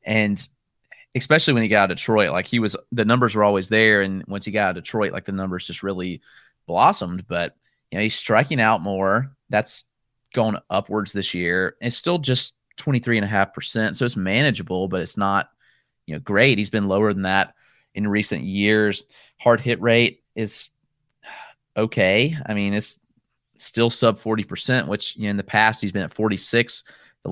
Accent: American